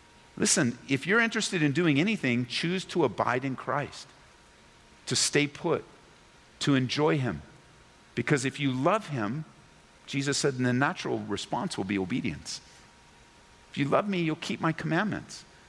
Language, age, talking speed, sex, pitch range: English, 50-69, 150 wpm, male, 145-205 Hz